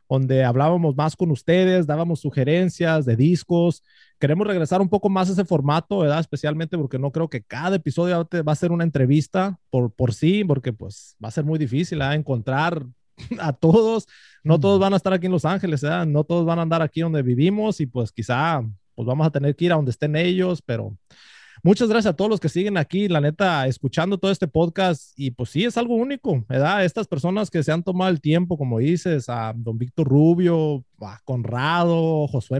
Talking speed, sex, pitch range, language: 210 wpm, male, 140-180 Hz, Spanish